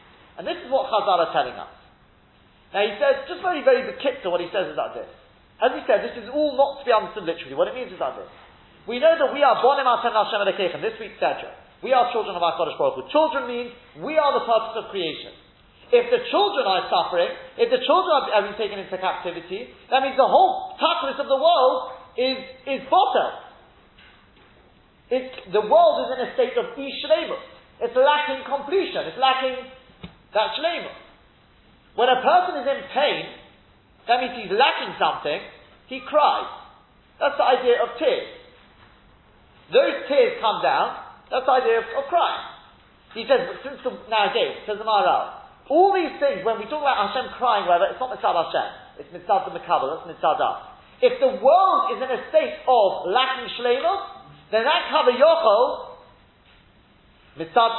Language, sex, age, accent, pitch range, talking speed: English, male, 30-49, British, 240-360 Hz, 185 wpm